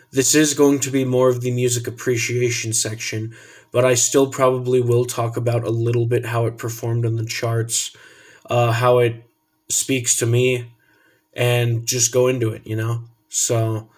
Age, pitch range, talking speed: 20-39, 115-130 Hz, 175 wpm